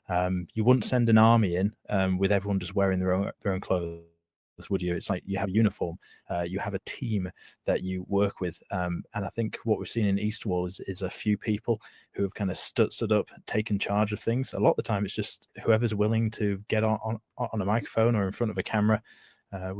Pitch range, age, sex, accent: 95-110 Hz, 20-39, male, British